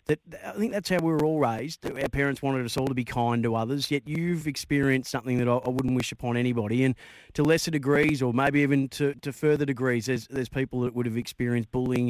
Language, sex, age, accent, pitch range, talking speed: English, male, 30-49, Australian, 120-150 Hz, 240 wpm